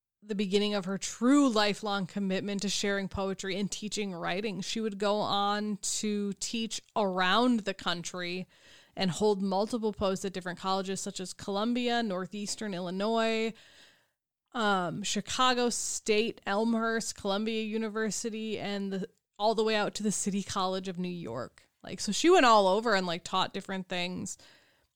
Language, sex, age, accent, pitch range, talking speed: English, female, 20-39, American, 195-225 Hz, 155 wpm